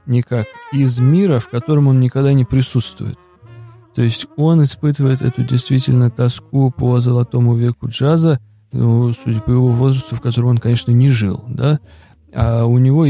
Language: Russian